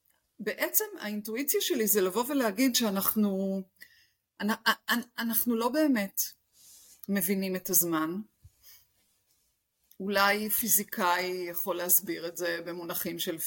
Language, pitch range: Hebrew, 185-250 Hz